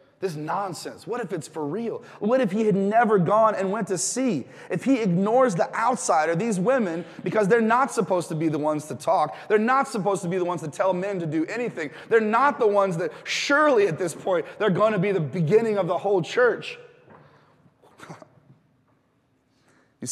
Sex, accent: male, American